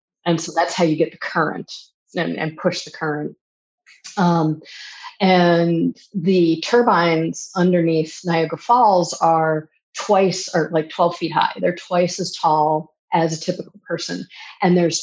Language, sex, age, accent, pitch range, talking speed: English, female, 40-59, American, 160-190 Hz, 150 wpm